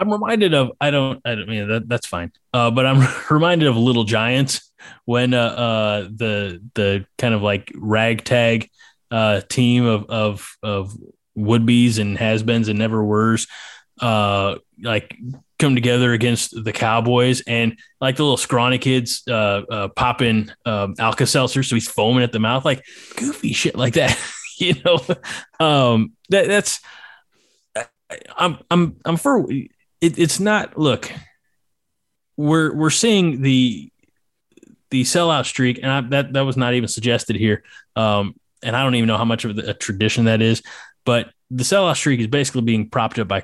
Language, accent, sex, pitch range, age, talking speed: English, American, male, 110-135 Hz, 20-39, 170 wpm